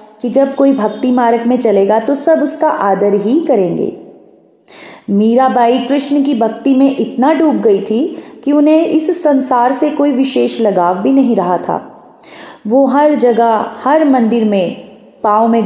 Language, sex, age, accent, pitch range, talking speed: Hindi, female, 30-49, native, 210-290 Hz, 160 wpm